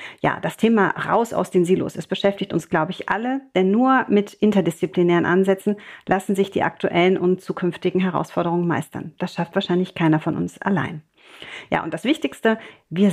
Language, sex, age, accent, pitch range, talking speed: German, female, 40-59, German, 175-205 Hz, 175 wpm